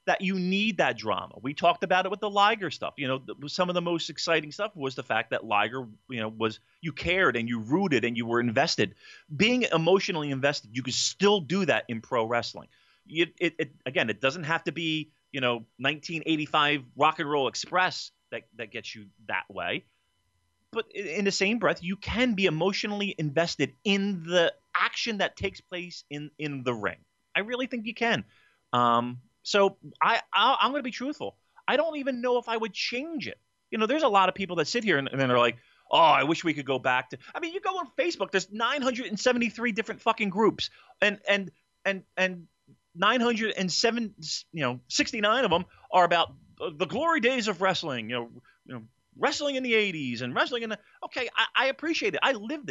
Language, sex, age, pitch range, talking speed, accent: English, male, 30-49, 130-215 Hz, 205 wpm, American